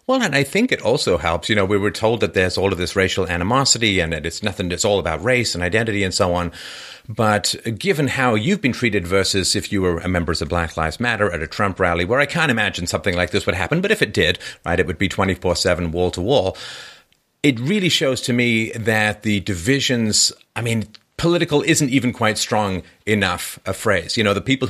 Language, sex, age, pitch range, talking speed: English, male, 40-59, 95-120 Hz, 225 wpm